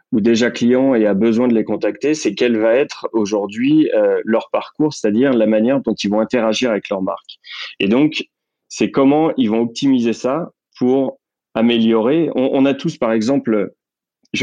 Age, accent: 30-49, French